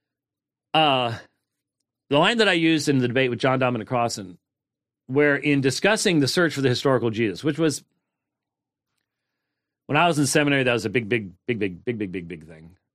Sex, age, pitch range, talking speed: male, 40-59, 115-145 Hz, 190 wpm